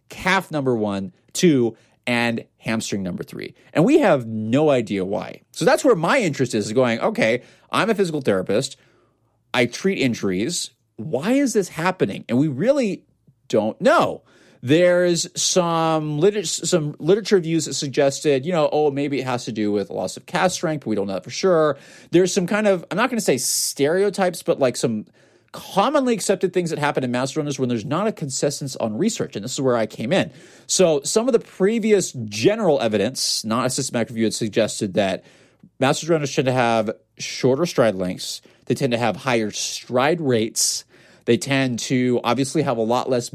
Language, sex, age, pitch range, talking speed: English, male, 30-49, 115-175 Hz, 190 wpm